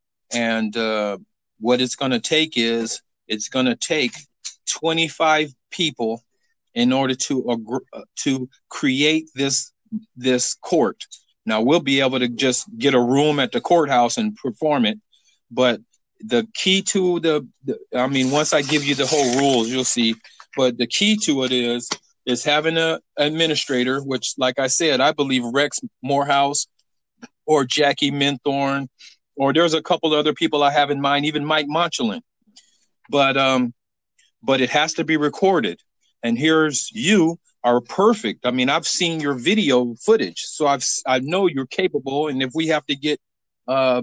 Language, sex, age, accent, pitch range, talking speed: English, male, 40-59, American, 130-160 Hz, 170 wpm